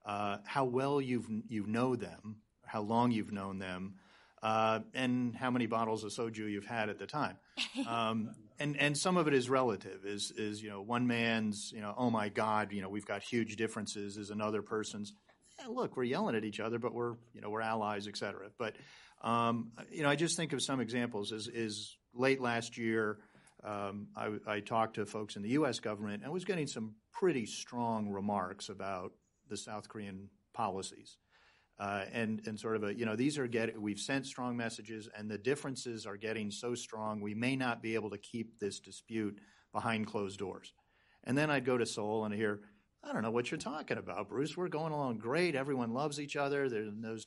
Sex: male